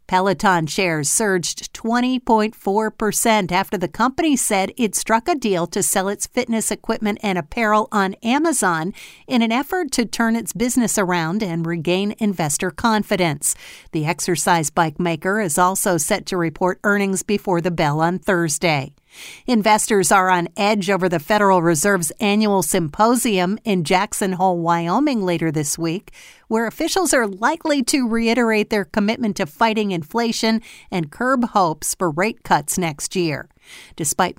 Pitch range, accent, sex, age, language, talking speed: 175-225 Hz, American, female, 50-69, English, 150 wpm